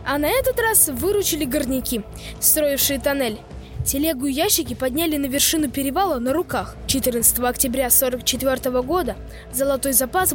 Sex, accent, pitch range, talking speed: female, native, 255-300 Hz, 135 wpm